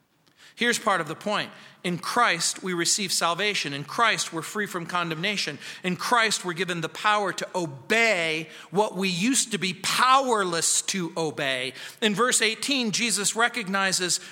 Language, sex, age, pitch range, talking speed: English, male, 40-59, 190-235 Hz, 155 wpm